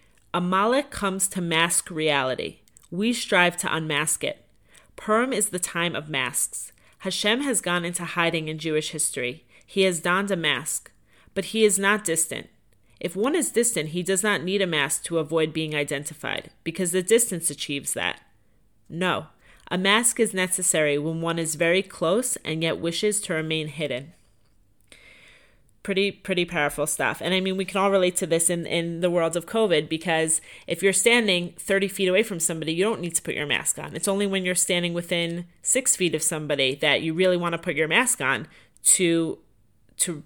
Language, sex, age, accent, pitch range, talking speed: English, female, 30-49, American, 155-190 Hz, 190 wpm